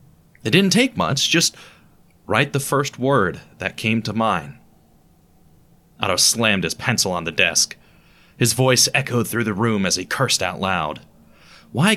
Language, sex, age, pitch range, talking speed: English, male, 30-49, 110-155 Hz, 160 wpm